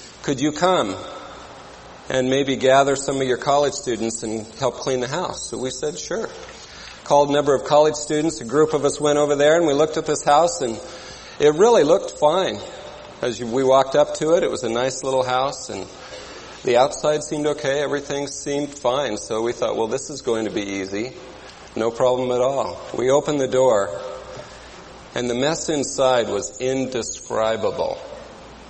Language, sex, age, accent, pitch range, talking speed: English, male, 40-59, American, 120-150 Hz, 185 wpm